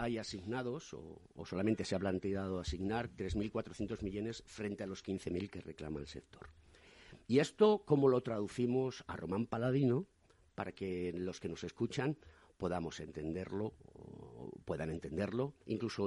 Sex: male